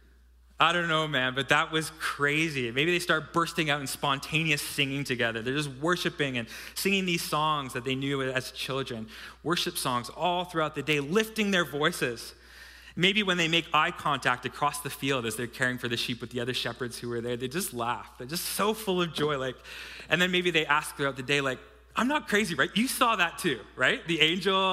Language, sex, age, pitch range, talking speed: English, male, 20-39, 120-170 Hz, 220 wpm